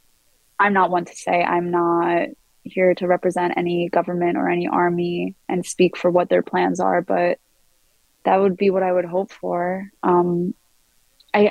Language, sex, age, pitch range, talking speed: English, female, 20-39, 180-195 Hz, 170 wpm